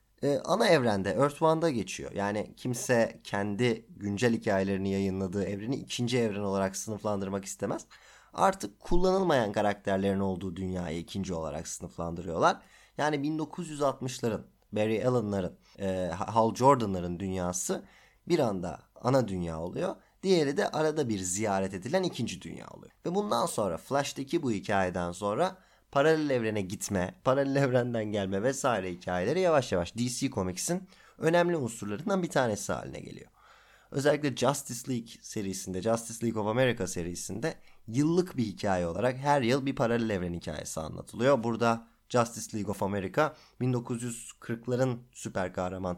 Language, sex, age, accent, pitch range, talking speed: Turkish, male, 30-49, native, 95-130 Hz, 130 wpm